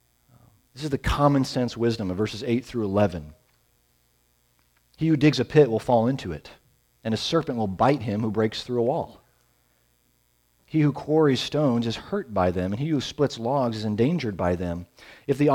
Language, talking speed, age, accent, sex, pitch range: English, 195 wpm, 40-59, American, male, 85-130 Hz